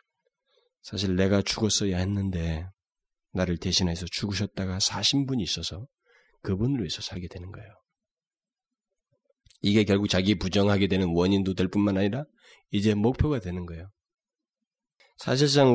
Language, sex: Korean, male